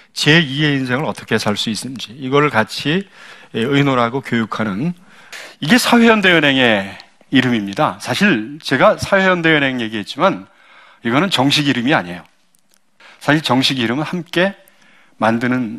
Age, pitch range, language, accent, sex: 40-59, 120-175 Hz, Korean, native, male